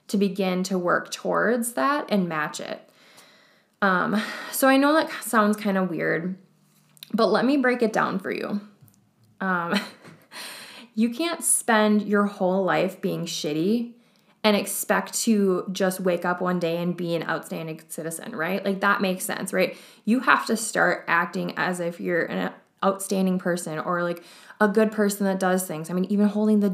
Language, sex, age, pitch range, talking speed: English, female, 20-39, 180-215 Hz, 175 wpm